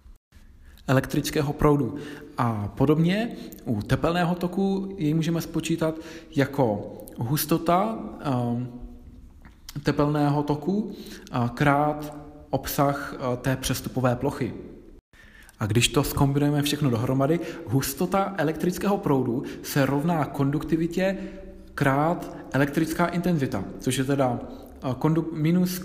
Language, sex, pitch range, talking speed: Czech, male, 130-165 Hz, 90 wpm